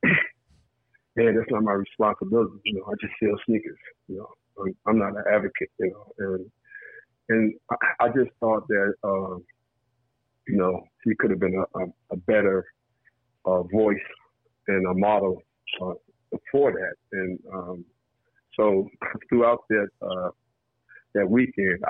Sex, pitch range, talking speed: male, 95-115 Hz, 150 wpm